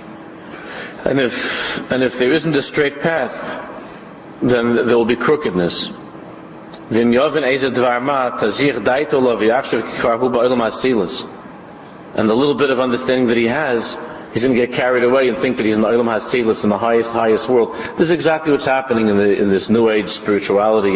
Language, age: English, 40-59